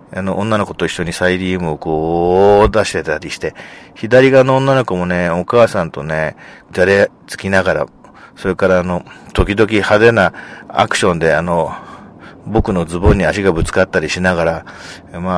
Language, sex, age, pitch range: Japanese, male, 40-59, 90-120 Hz